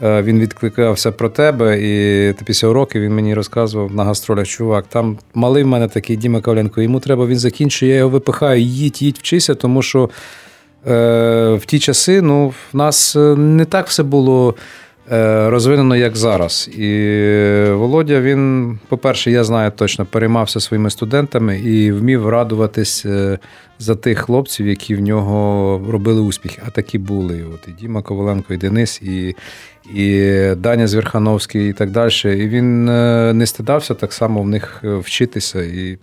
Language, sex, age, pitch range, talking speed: English, male, 40-59, 105-125 Hz, 155 wpm